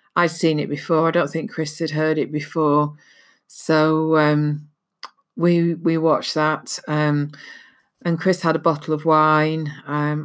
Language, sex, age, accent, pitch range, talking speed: English, female, 40-59, British, 150-170 Hz, 160 wpm